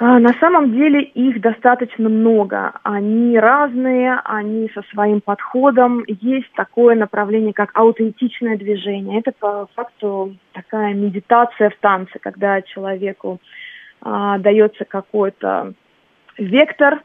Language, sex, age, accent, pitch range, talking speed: Russian, female, 20-39, native, 205-235 Hz, 105 wpm